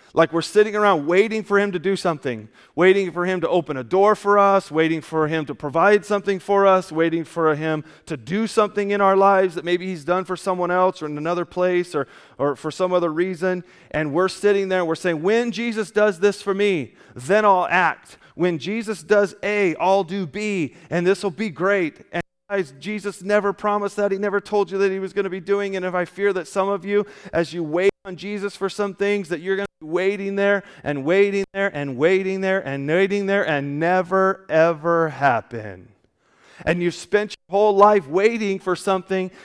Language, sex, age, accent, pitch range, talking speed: English, male, 30-49, American, 175-200 Hz, 215 wpm